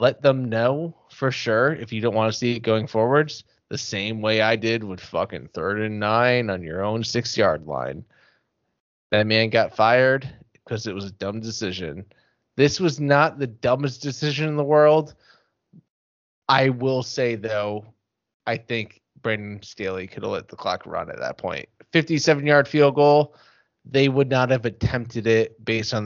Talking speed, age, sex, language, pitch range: 180 wpm, 20-39, male, English, 110-140 Hz